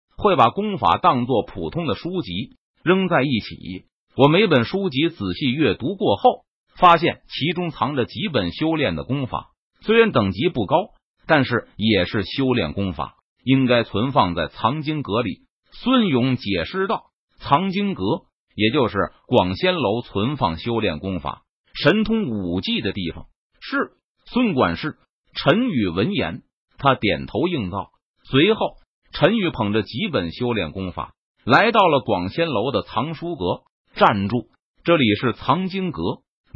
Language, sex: Chinese, male